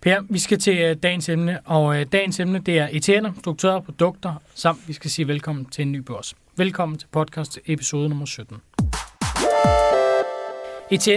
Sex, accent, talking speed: male, native, 155 wpm